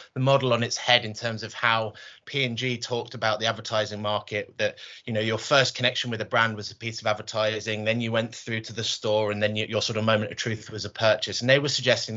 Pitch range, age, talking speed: 110-130 Hz, 30-49, 255 wpm